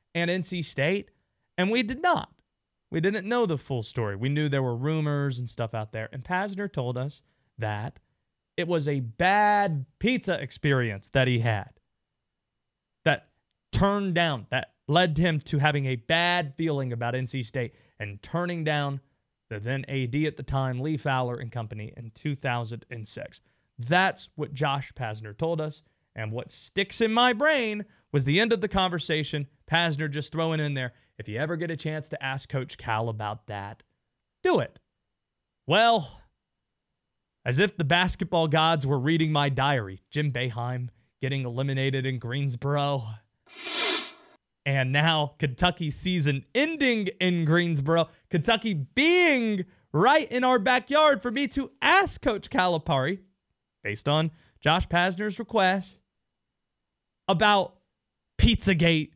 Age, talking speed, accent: 30-49, 145 wpm, American